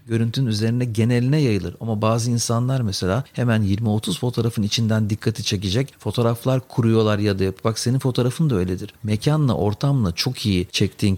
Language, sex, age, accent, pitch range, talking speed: Turkish, male, 50-69, native, 100-125 Hz, 150 wpm